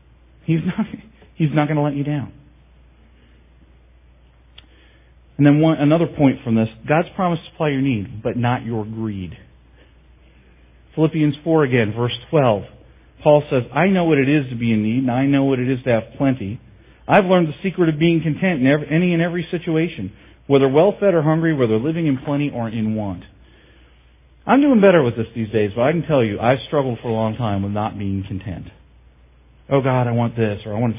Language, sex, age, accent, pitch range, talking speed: English, male, 40-59, American, 100-145 Hz, 200 wpm